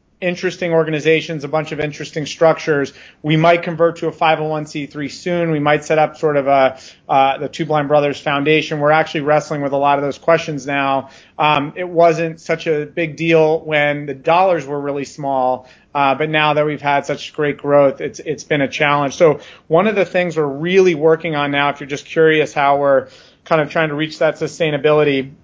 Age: 30-49